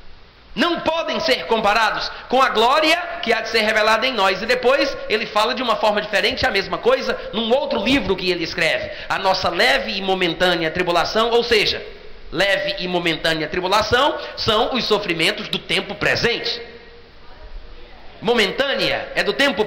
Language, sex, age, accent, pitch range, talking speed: Portuguese, male, 40-59, Brazilian, 210-335 Hz, 160 wpm